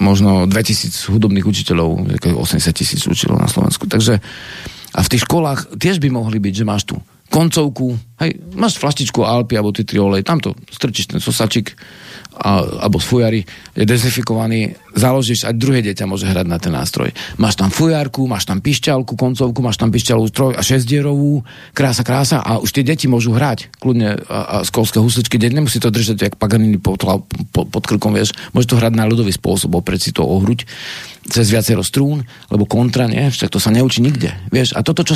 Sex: male